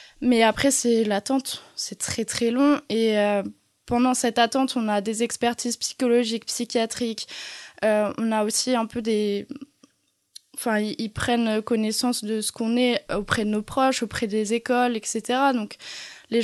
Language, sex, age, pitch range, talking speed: French, female, 20-39, 215-250 Hz, 165 wpm